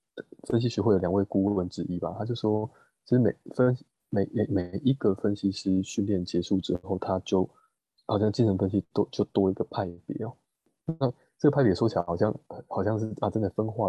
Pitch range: 95-120 Hz